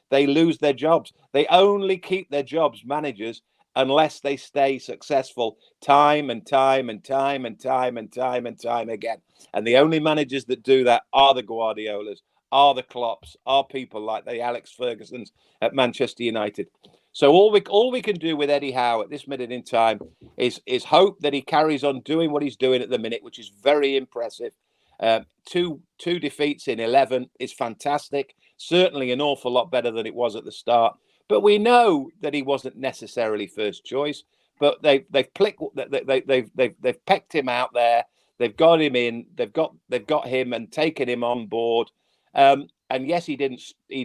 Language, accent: English, British